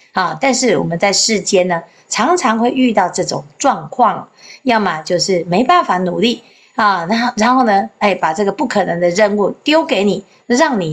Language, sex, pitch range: Chinese, female, 175-250 Hz